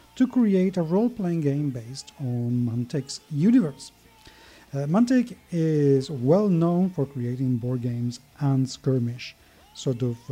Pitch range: 130-180 Hz